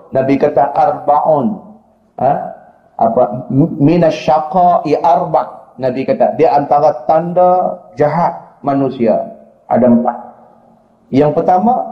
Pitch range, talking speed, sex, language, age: 140-190 Hz, 90 wpm, male, Malay, 40-59